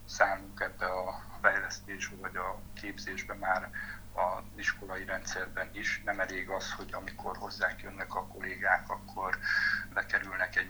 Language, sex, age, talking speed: Hungarian, male, 60-79, 135 wpm